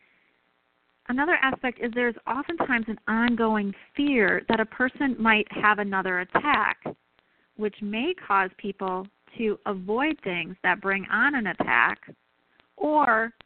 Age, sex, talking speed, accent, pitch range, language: 30-49, female, 125 wpm, American, 175-245 Hz, English